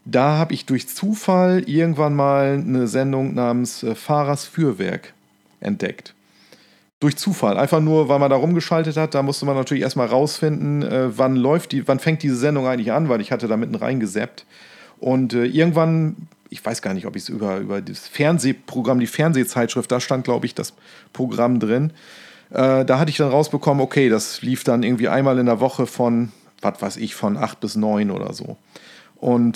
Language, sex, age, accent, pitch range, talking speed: German, male, 40-59, German, 125-155 Hz, 185 wpm